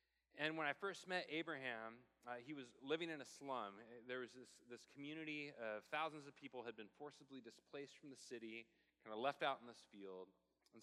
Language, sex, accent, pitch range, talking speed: English, male, American, 115-150 Hz, 205 wpm